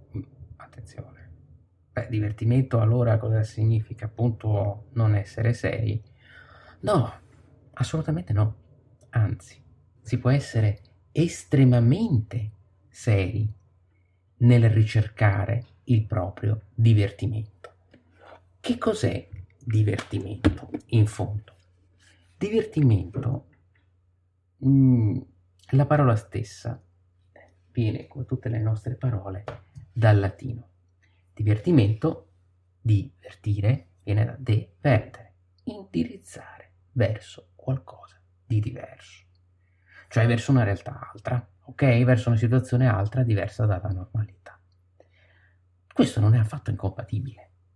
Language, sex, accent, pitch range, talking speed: Italian, male, native, 95-125 Hz, 90 wpm